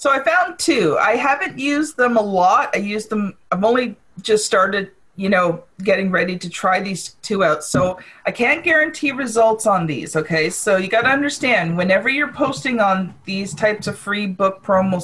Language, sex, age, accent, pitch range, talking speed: English, female, 40-59, American, 190-255 Hz, 195 wpm